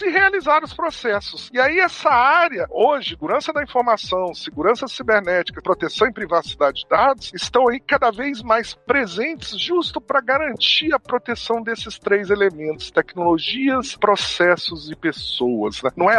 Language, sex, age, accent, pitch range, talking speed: Portuguese, male, 50-69, Brazilian, 185-280 Hz, 150 wpm